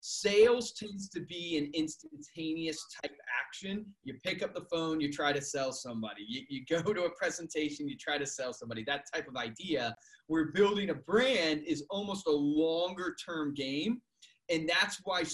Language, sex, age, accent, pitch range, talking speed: English, male, 30-49, American, 150-210 Hz, 185 wpm